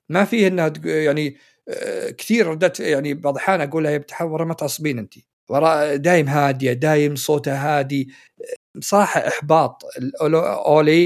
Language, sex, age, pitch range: Arabic, male, 50-69, 120-145 Hz